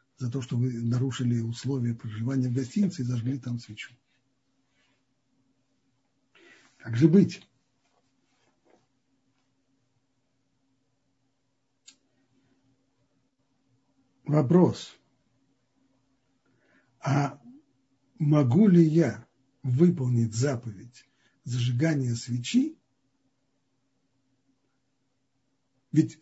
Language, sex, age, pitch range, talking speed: Russian, male, 60-79, 125-150 Hz, 60 wpm